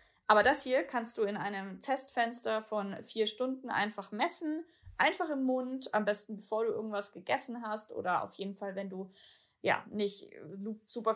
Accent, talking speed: German, 170 wpm